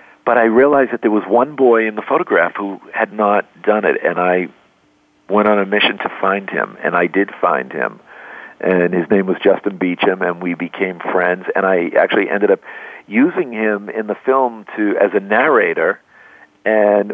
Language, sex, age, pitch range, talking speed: English, male, 50-69, 95-115 Hz, 195 wpm